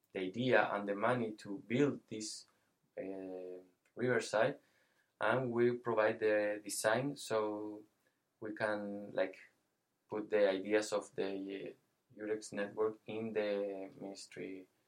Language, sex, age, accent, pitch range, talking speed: English, male, 20-39, Spanish, 100-110 Hz, 115 wpm